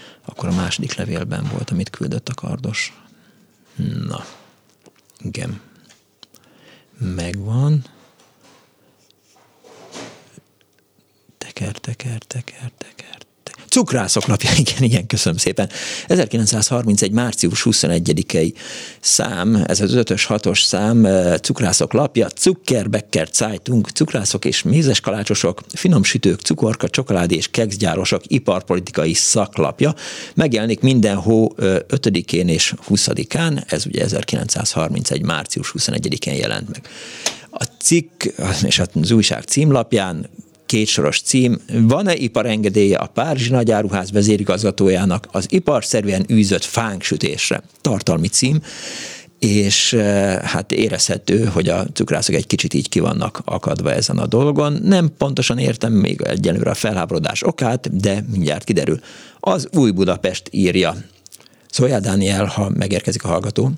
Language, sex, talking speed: Hungarian, male, 115 wpm